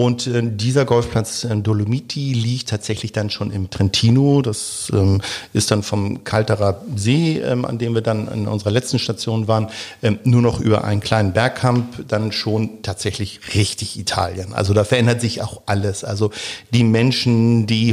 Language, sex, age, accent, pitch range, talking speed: German, male, 50-69, German, 105-125 Hz, 155 wpm